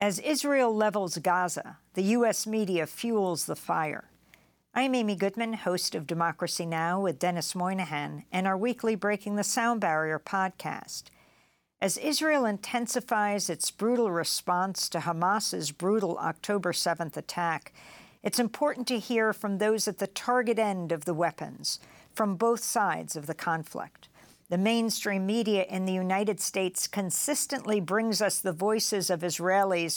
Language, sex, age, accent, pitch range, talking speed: English, female, 50-69, American, 175-220 Hz, 145 wpm